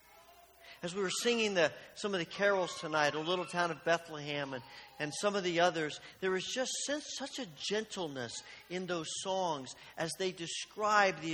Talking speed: 185 wpm